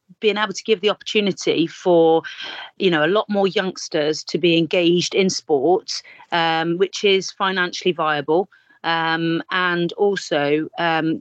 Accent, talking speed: British, 145 wpm